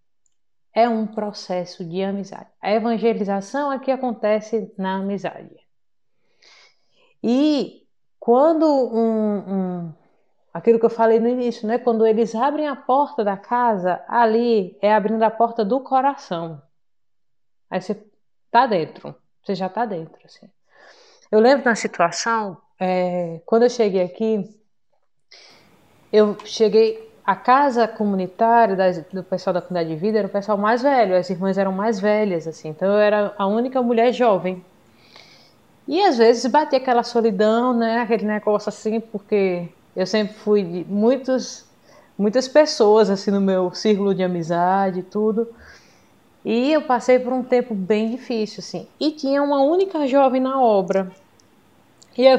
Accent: Brazilian